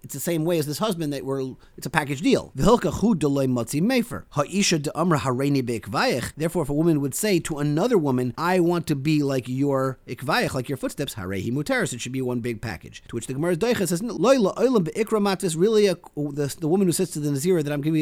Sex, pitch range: male, 125-175 Hz